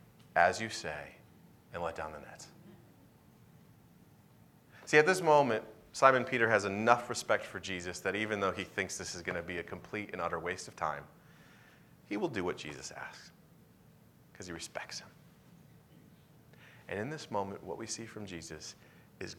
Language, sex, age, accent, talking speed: English, male, 30-49, American, 175 wpm